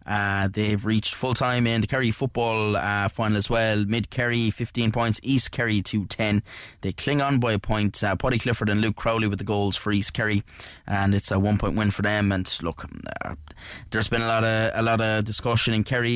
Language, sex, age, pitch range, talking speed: English, male, 20-39, 100-115 Hz, 215 wpm